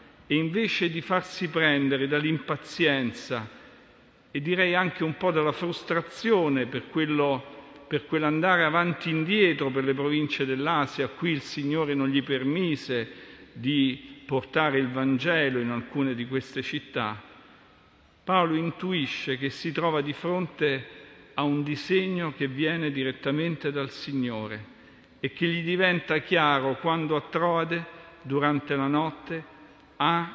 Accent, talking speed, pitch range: native, 130 wpm, 135-170 Hz